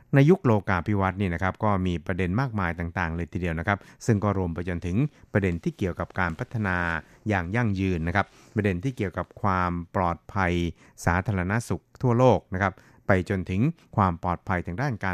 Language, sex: Thai, male